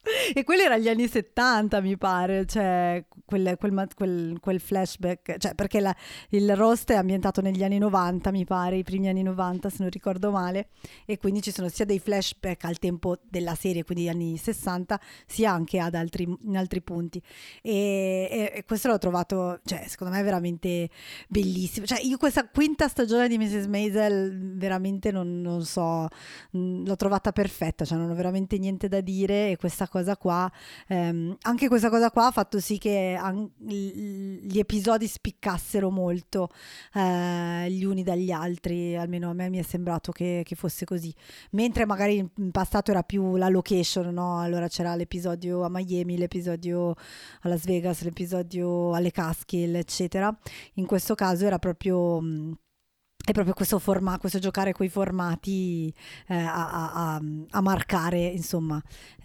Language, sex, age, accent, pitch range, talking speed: Italian, female, 20-39, native, 175-205 Hz, 170 wpm